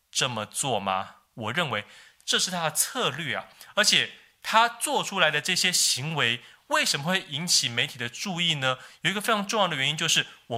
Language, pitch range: Chinese, 140-200 Hz